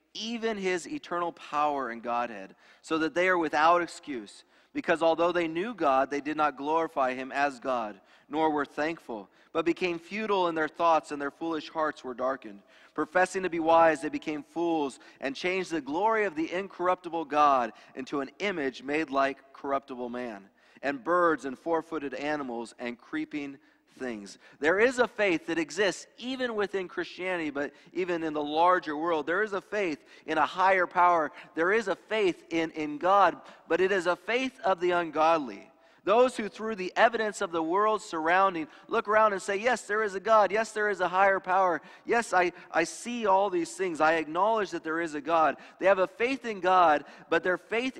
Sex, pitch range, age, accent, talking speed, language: male, 150-195 Hz, 30-49, American, 195 wpm, English